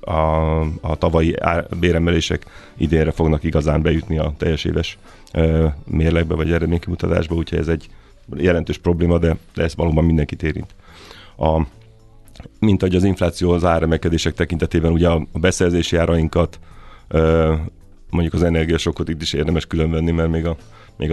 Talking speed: 150 wpm